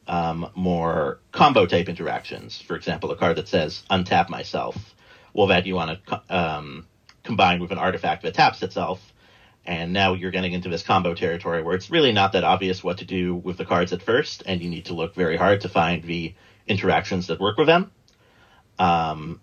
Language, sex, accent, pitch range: English, male, American, 85-105 Hz